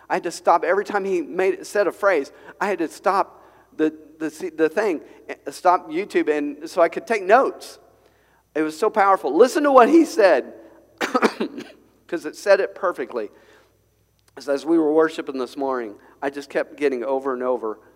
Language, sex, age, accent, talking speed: English, male, 50-69, American, 180 wpm